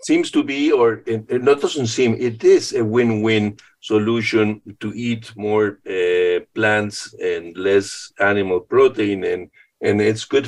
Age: 50-69